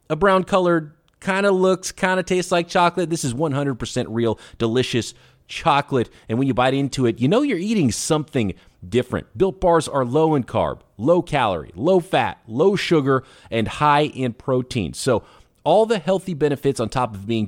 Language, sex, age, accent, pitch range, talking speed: English, male, 30-49, American, 110-165 Hz, 185 wpm